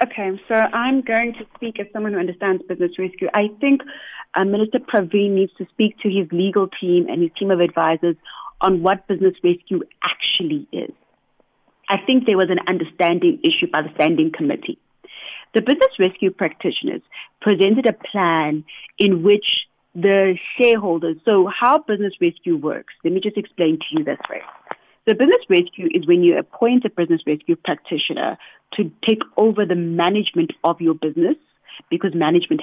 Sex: female